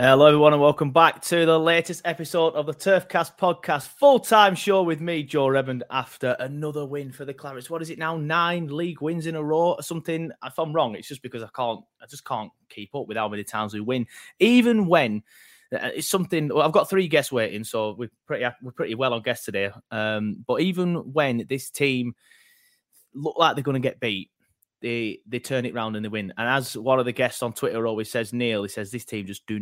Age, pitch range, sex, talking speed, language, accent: 20-39, 125-165 Hz, male, 230 wpm, English, British